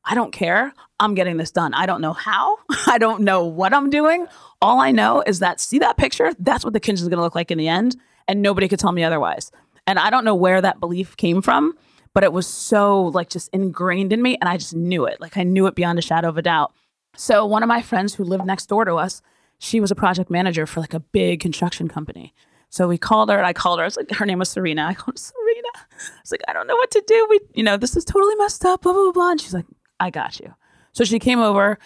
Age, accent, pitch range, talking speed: 20-39, American, 185-240 Hz, 275 wpm